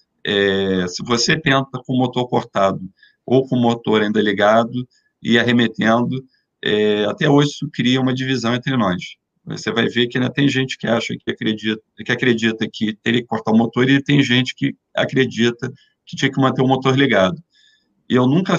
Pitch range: 110-135 Hz